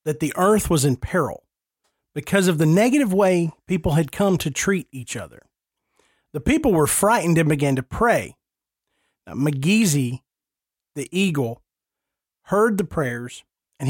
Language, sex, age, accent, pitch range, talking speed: English, male, 40-59, American, 145-200 Hz, 145 wpm